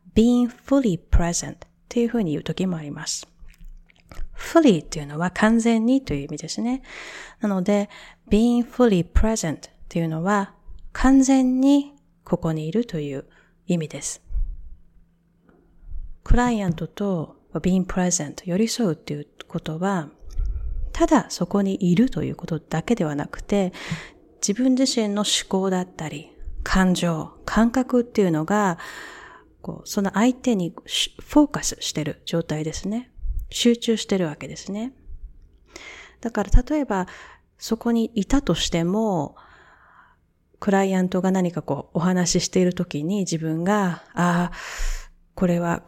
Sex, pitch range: female, 165-225 Hz